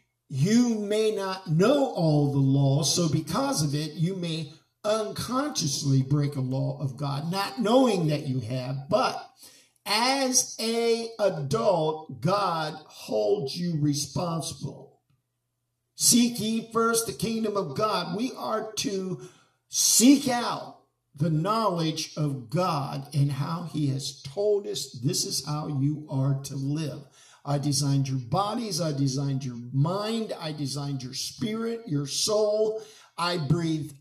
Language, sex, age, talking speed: English, male, 50-69, 135 wpm